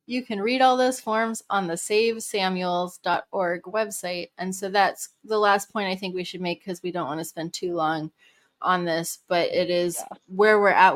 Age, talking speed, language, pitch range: 20-39, 205 wpm, English, 170-195 Hz